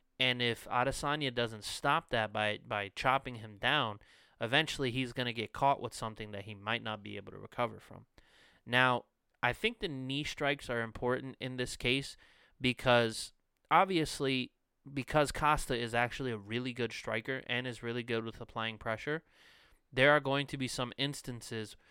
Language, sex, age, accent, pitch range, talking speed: English, male, 20-39, American, 115-135 Hz, 175 wpm